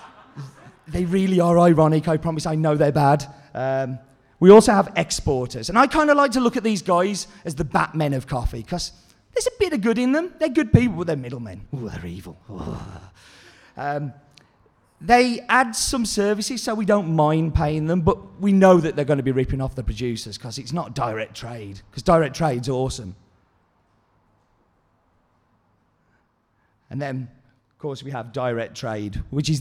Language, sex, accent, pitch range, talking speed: English, male, British, 125-175 Hz, 180 wpm